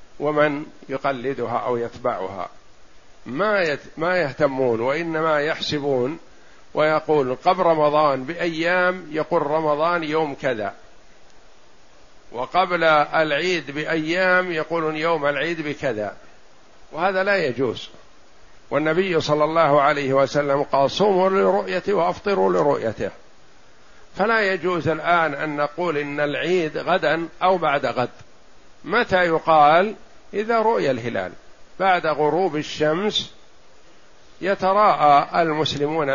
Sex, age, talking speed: male, 50-69, 95 wpm